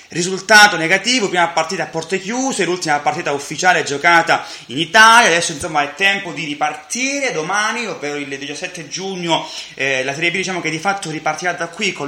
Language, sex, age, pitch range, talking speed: Italian, male, 20-39, 145-185 Hz, 180 wpm